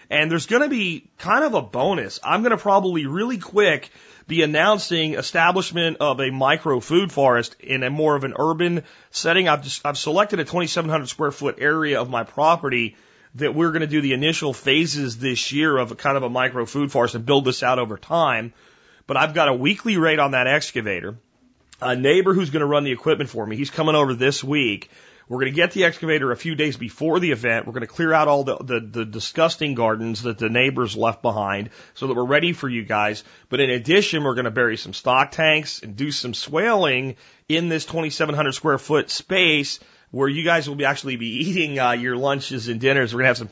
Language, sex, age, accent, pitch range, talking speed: English, male, 30-49, American, 125-160 Hz, 215 wpm